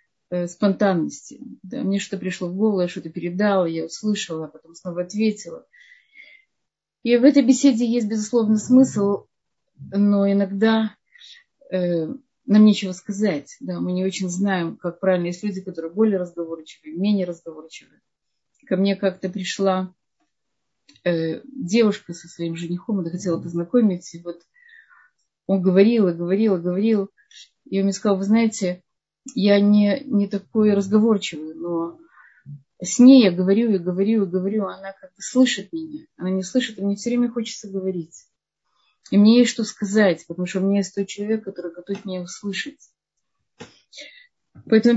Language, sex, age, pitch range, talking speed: Russian, female, 30-49, 180-220 Hz, 150 wpm